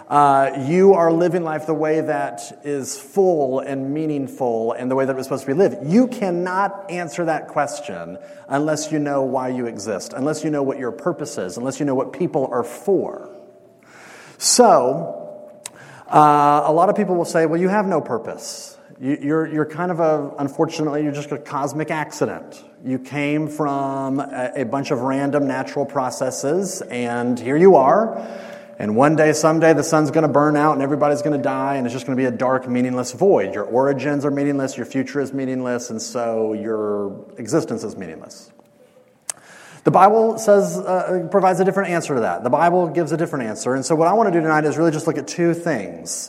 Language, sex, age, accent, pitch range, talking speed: English, male, 30-49, American, 135-165 Hz, 200 wpm